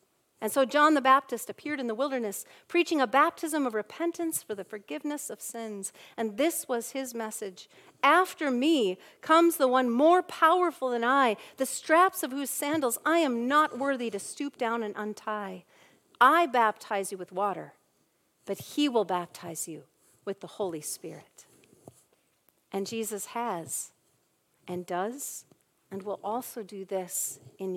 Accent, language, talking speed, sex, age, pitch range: American, English, 155 wpm, female, 50-69, 200-280 Hz